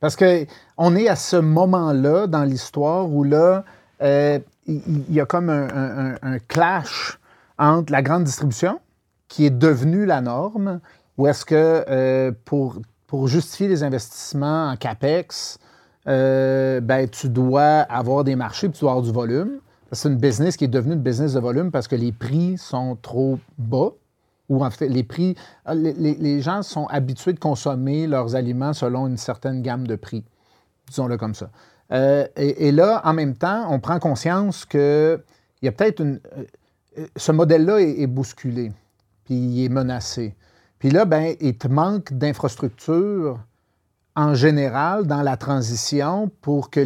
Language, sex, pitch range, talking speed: French, male, 125-155 Hz, 170 wpm